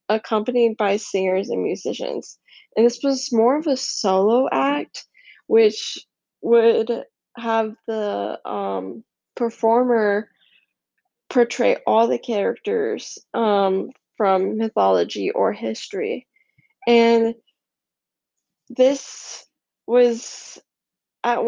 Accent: American